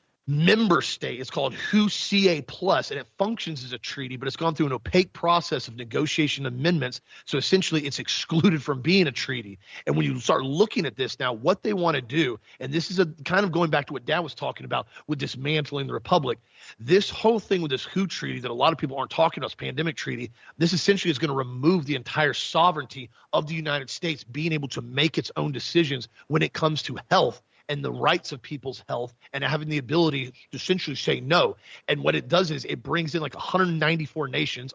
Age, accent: 40-59, American